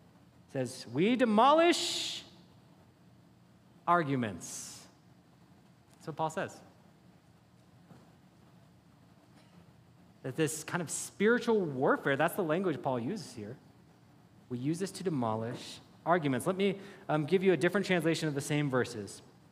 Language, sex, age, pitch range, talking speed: English, male, 30-49, 135-205 Hz, 115 wpm